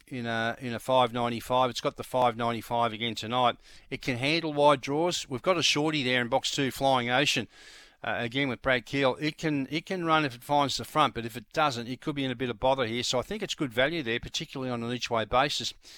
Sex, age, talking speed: male, 50-69, 250 wpm